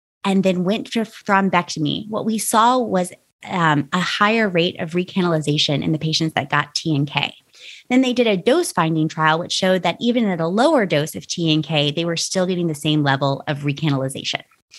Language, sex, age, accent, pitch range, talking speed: English, female, 20-39, American, 160-205 Hz, 205 wpm